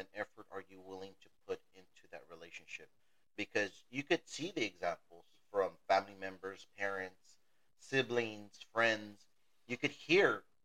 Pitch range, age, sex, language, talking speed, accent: 95-120 Hz, 30-49, male, English, 135 wpm, American